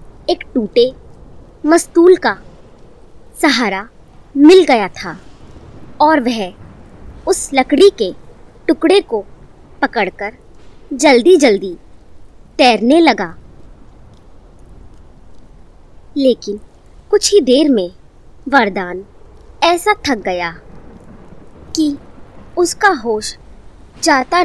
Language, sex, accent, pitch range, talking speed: Hindi, male, native, 215-330 Hz, 80 wpm